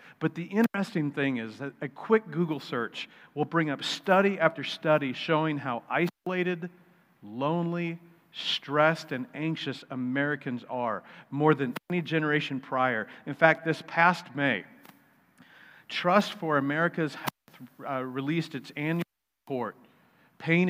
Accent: American